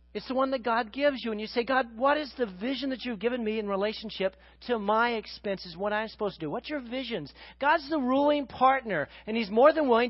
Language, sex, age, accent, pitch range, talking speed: English, male, 40-59, American, 190-265 Hz, 245 wpm